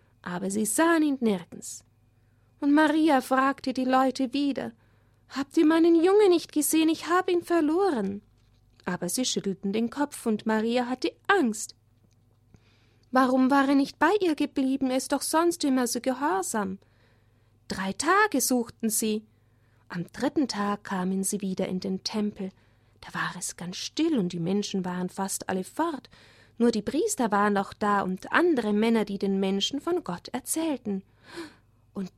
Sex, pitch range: female, 190-285 Hz